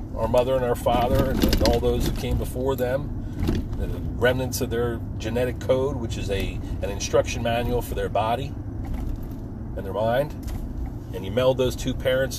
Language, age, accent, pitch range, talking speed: English, 40-59, American, 100-125 Hz, 175 wpm